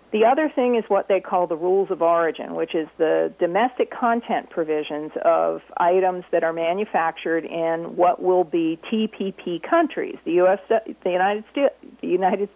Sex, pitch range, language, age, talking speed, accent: female, 170-265 Hz, English, 50-69, 165 wpm, American